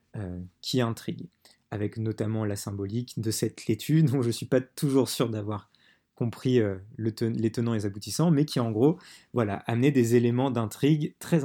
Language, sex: French, male